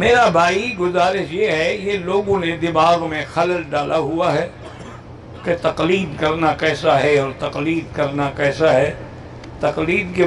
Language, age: Urdu, 60-79